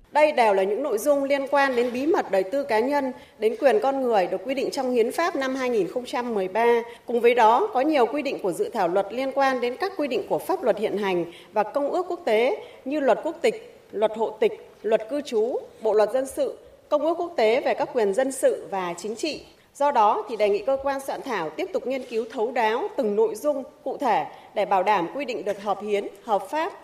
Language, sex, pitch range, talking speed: Vietnamese, female, 205-280 Hz, 245 wpm